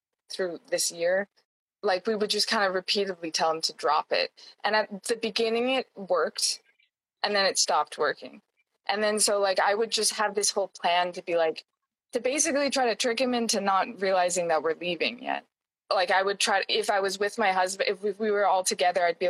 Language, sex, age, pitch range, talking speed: English, female, 20-39, 185-240 Hz, 220 wpm